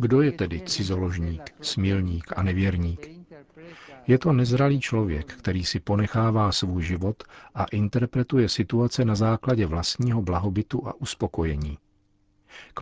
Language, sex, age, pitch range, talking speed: Czech, male, 50-69, 95-115 Hz, 120 wpm